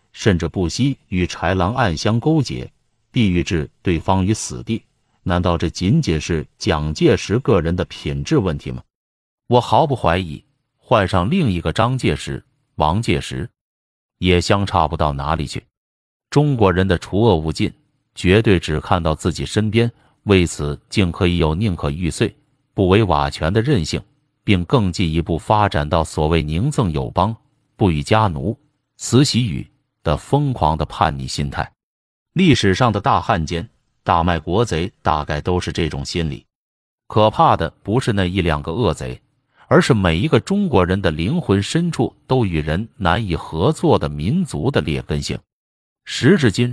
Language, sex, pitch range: Chinese, male, 80-115 Hz